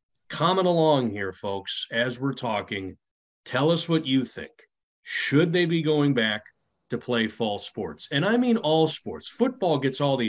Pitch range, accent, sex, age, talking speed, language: 110-140 Hz, American, male, 30-49, 175 wpm, English